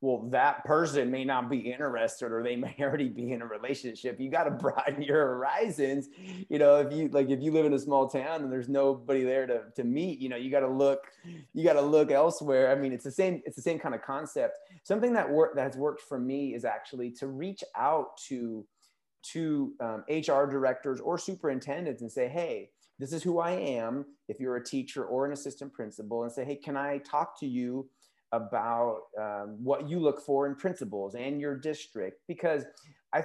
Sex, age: male, 30-49